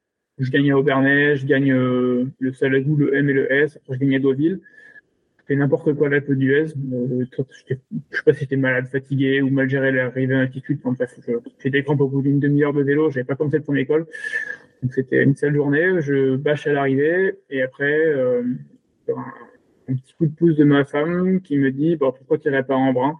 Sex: male